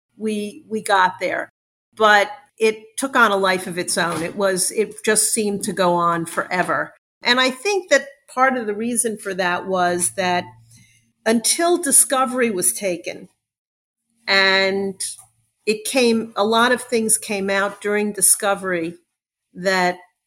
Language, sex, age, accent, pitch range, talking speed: English, female, 50-69, American, 180-225 Hz, 150 wpm